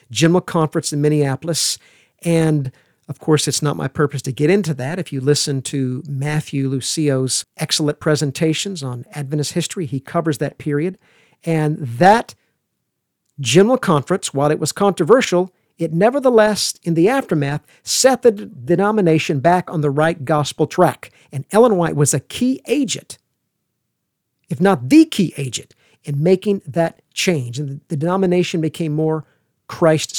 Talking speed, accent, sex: 145 wpm, American, male